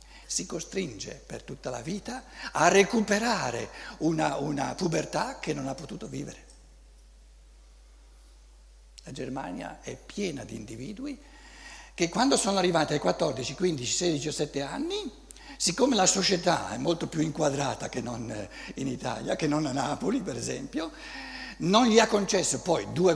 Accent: native